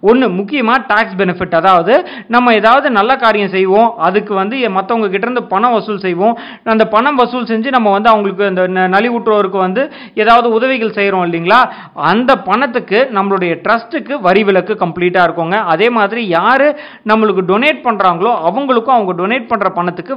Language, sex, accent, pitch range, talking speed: Tamil, male, native, 190-245 Hz, 150 wpm